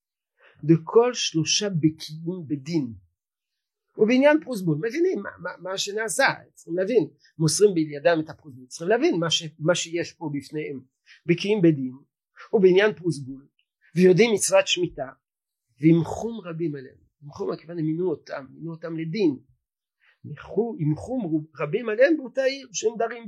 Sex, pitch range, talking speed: male, 150-210 Hz, 140 wpm